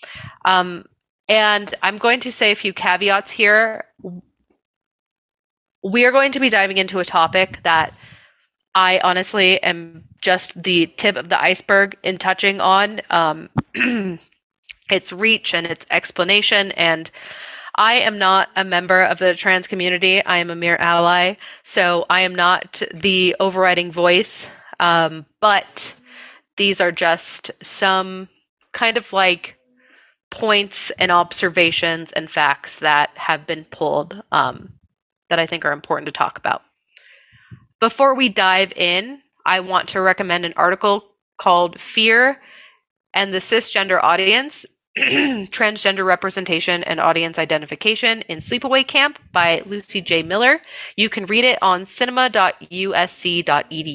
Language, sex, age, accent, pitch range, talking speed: English, female, 30-49, American, 175-220 Hz, 135 wpm